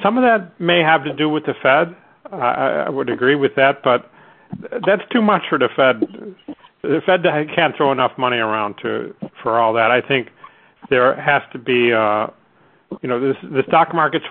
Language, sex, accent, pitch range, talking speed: English, male, American, 115-140 Hz, 195 wpm